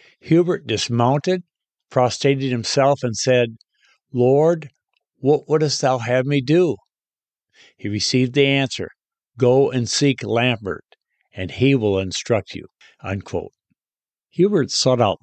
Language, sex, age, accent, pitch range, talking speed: English, male, 60-79, American, 105-140 Hz, 120 wpm